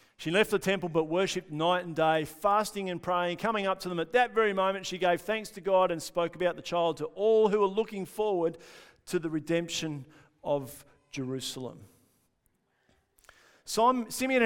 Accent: Australian